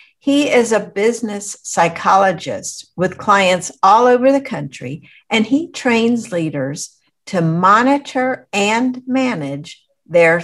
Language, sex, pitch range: English, female, 170-245 Hz